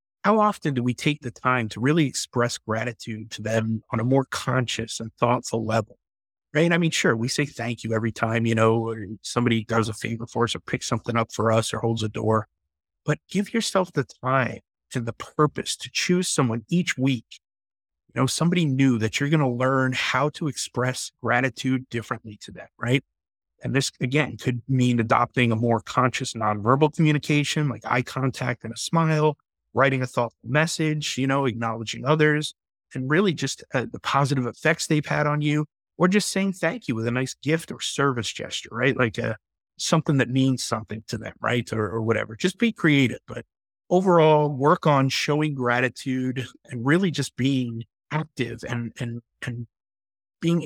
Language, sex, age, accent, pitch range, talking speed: English, male, 30-49, American, 115-150 Hz, 185 wpm